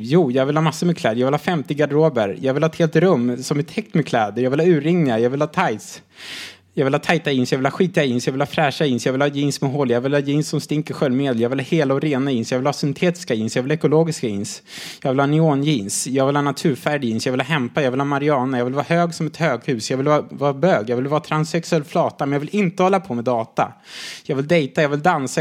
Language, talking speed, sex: Swedish, 295 wpm, male